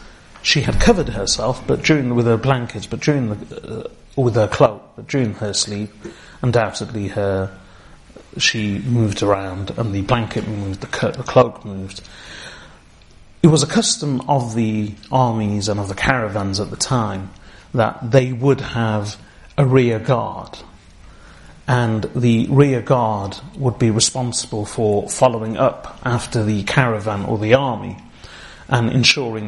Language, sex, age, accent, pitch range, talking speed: English, male, 30-49, British, 105-130 Hz, 145 wpm